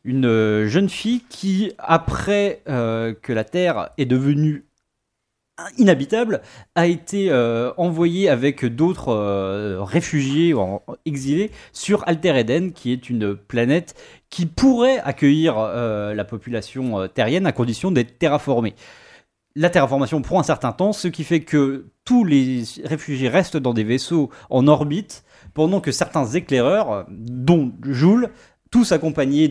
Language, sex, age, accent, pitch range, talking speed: French, male, 30-49, French, 120-170 Hz, 135 wpm